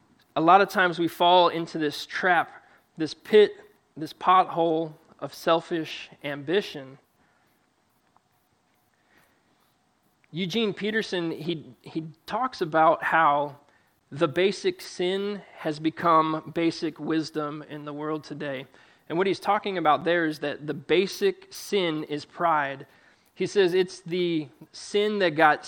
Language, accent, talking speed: English, American, 125 wpm